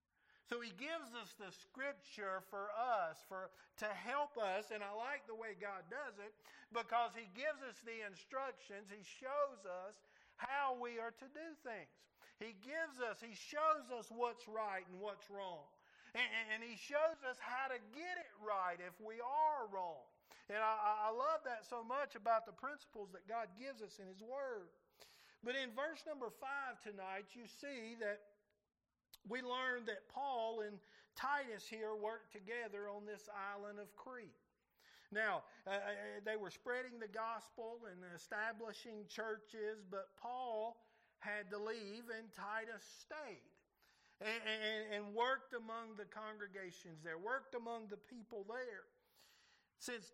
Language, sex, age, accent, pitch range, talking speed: English, male, 50-69, American, 205-250 Hz, 160 wpm